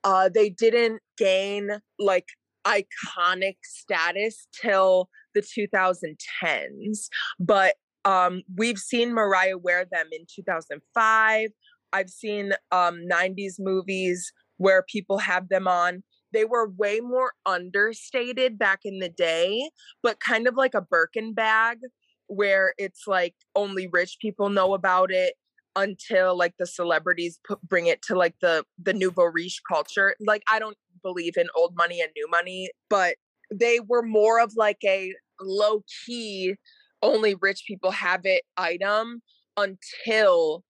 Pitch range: 185-220 Hz